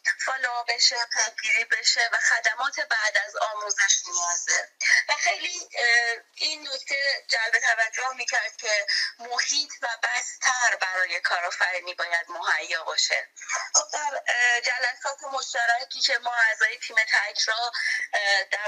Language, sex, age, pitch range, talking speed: Persian, female, 20-39, 200-255 Hz, 115 wpm